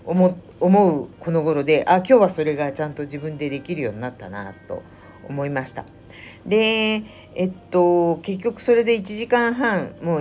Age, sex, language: 50-69, female, Japanese